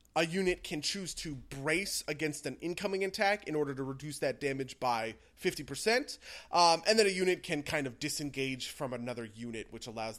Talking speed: 190 wpm